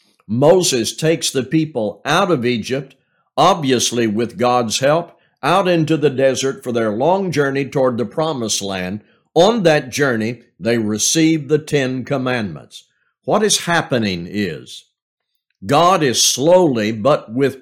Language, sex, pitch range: English, male, 120-165 Hz